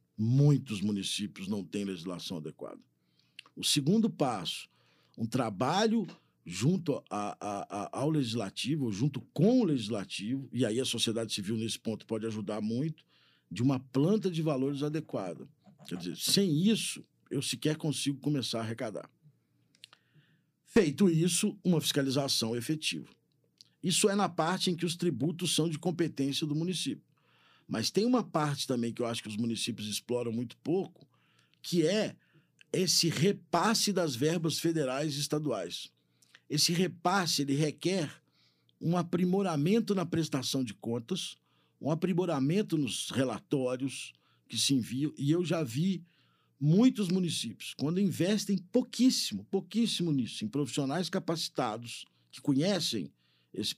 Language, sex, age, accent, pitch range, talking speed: Portuguese, male, 50-69, Brazilian, 115-175 Hz, 135 wpm